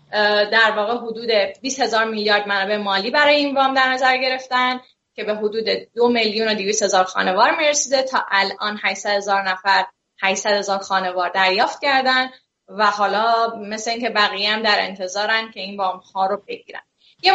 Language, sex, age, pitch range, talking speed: Persian, female, 10-29, 200-260 Hz, 170 wpm